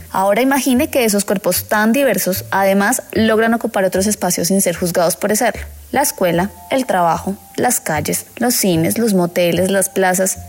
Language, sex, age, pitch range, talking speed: Spanish, female, 20-39, 190-250 Hz, 165 wpm